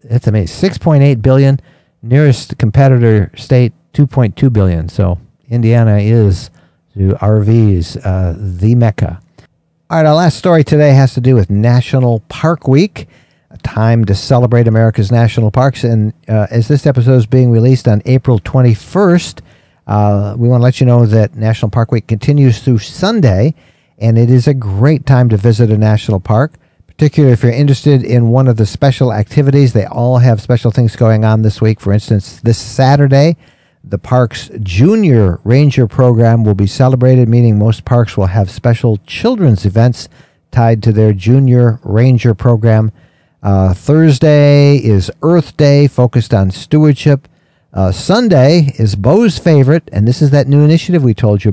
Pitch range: 110-140 Hz